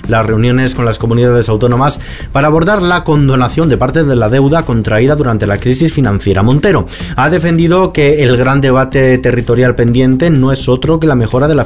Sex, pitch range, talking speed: male, 115-150 Hz, 190 wpm